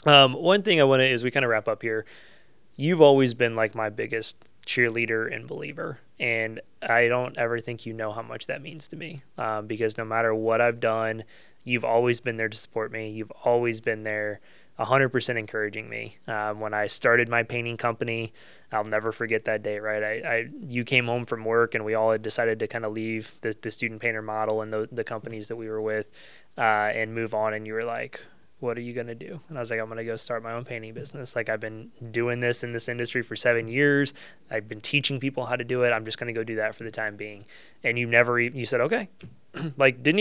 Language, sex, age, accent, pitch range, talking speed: English, male, 20-39, American, 110-125 Hz, 250 wpm